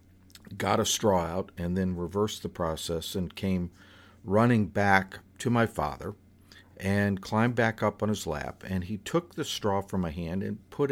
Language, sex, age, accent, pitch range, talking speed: English, male, 50-69, American, 95-115 Hz, 180 wpm